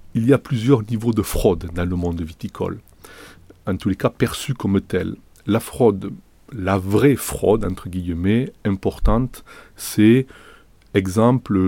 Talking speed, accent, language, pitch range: 145 wpm, French, French, 90-115 Hz